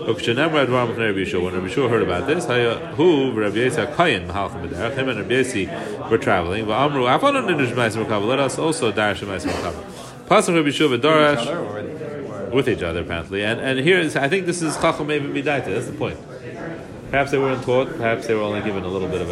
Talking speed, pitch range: 230 wpm, 105-150 Hz